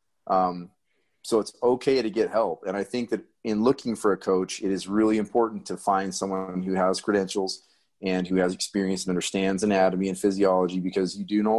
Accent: American